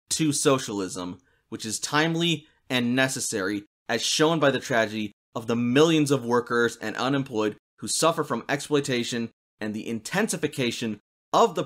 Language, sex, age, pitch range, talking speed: English, male, 30-49, 110-150 Hz, 145 wpm